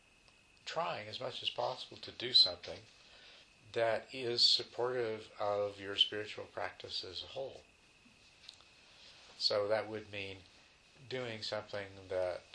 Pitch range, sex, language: 90-115 Hz, male, English